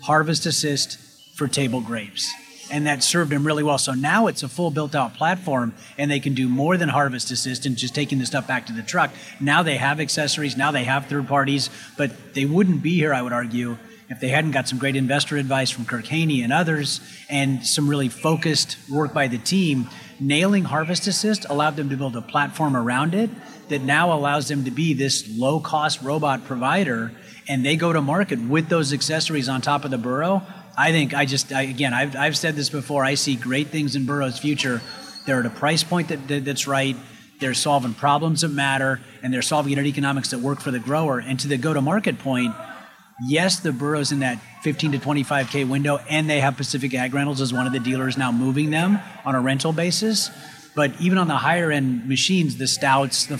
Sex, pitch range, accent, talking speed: male, 130-155 Hz, American, 220 wpm